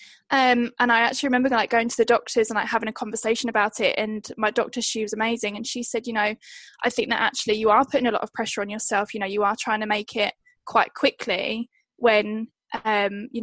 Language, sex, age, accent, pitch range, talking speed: English, female, 10-29, British, 215-245 Hz, 240 wpm